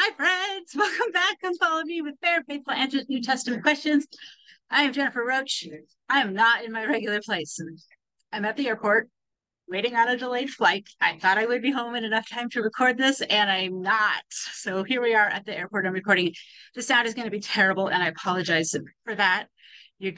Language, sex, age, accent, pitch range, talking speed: English, female, 30-49, American, 185-260 Hz, 210 wpm